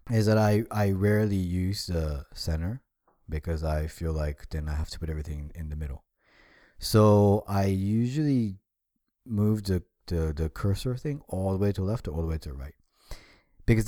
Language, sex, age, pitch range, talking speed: English, male, 30-49, 80-105 Hz, 190 wpm